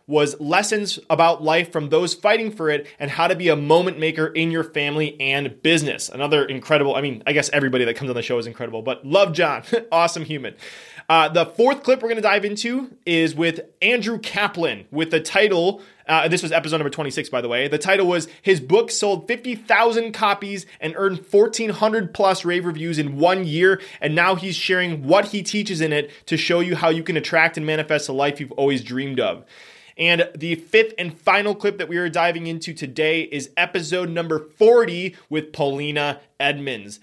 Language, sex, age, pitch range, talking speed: English, male, 20-39, 155-195 Hz, 205 wpm